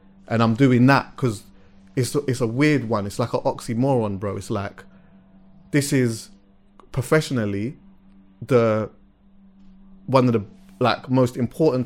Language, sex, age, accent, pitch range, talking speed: English, male, 30-49, British, 100-130 Hz, 135 wpm